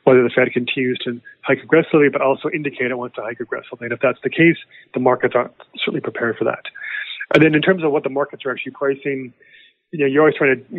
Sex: male